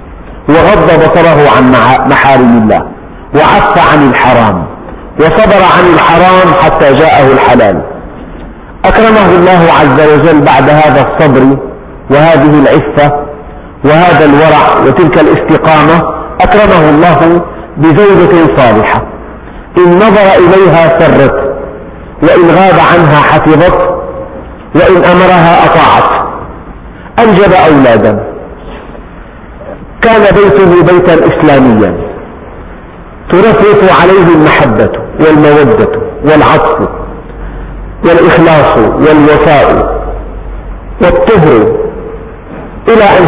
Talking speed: 80 wpm